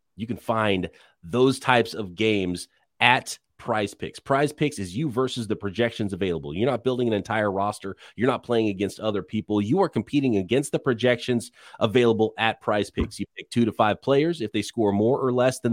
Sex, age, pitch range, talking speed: male, 30-49, 115-185 Hz, 200 wpm